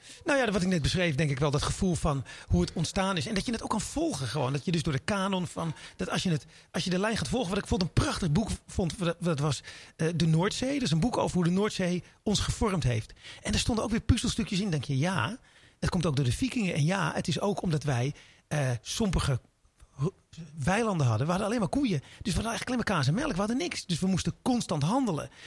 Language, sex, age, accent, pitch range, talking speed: Dutch, male, 40-59, Dutch, 145-200 Hz, 270 wpm